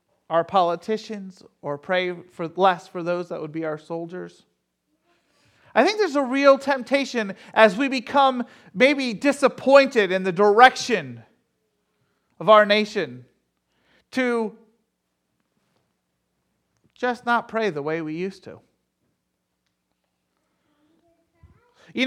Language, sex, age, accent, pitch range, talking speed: English, male, 40-59, American, 185-275 Hz, 110 wpm